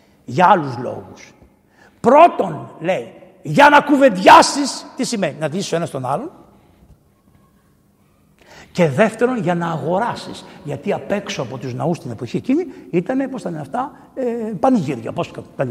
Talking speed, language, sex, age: 130 wpm, Greek, male, 60-79